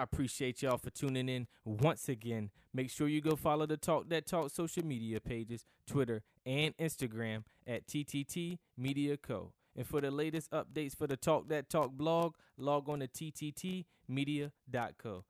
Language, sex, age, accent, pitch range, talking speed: English, male, 20-39, American, 125-150 Hz, 165 wpm